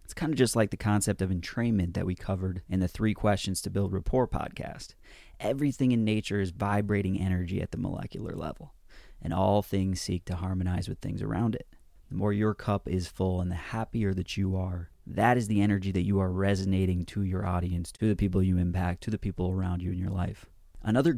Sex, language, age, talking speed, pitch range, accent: male, English, 30-49, 220 wpm, 95-105 Hz, American